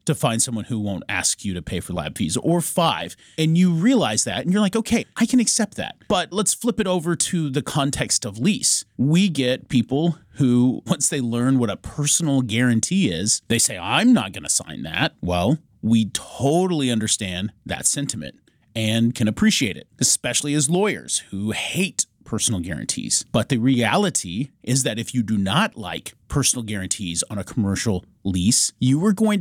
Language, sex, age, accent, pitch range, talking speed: English, male, 30-49, American, 105-150 Hz, 190 wpm